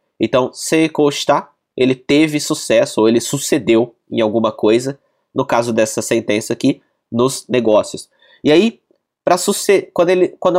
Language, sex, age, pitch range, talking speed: Portuguese, male, 20-39, 125-175 Hz, 135 wpm